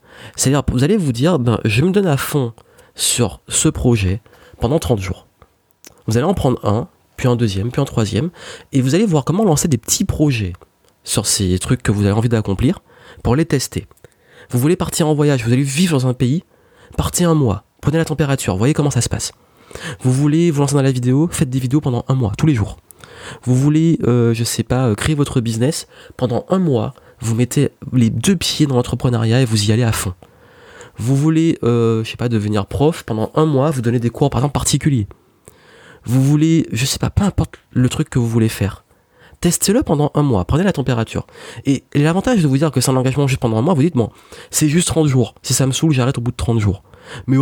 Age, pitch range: 30-49, 115-145 Hz